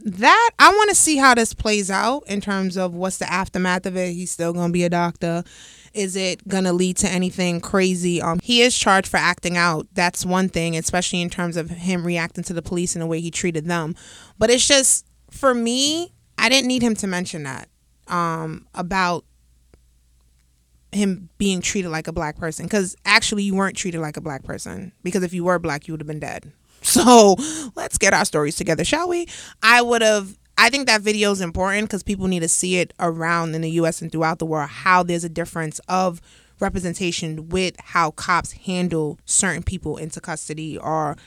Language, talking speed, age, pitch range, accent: English, 205 wpm, 20-39, 165-195 Hz, American